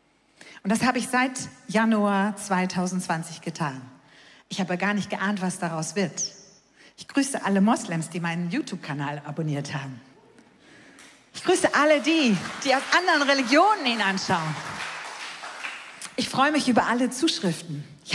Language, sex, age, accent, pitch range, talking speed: German, female, 40-59, German, 195-285 Hz, 140 wpm